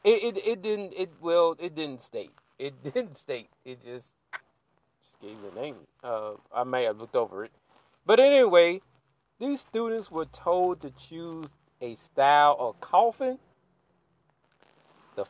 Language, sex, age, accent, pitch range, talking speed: English, male, 40-59, American, 130-195 Hz, 150 wpm